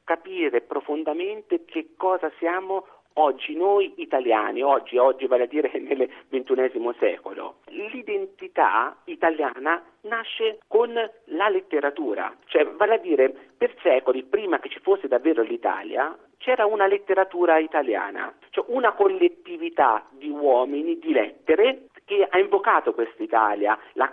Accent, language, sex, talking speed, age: native, Italian, male, 125 wpm, 50-69